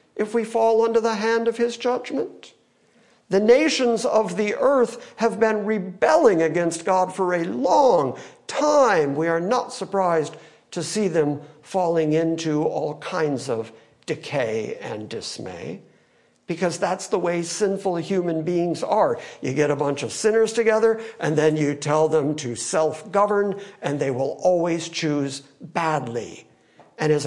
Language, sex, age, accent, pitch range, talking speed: English, male, 60-79, American, 145-215 Hz, 150 wpm